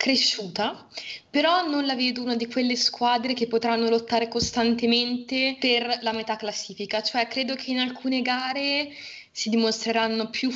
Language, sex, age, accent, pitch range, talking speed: Italian, female, 20-39, native, 210-245 Hz, 150 wpm